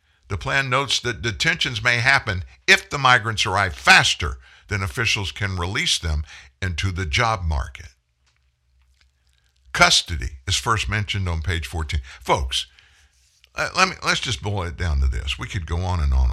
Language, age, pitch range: English, 60-79, 70-105 Hz